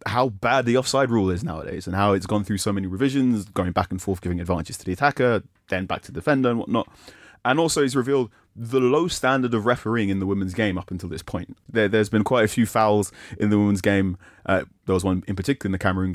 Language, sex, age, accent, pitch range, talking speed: English, male, 20-39, British, 90-110 Hz, 250 wpm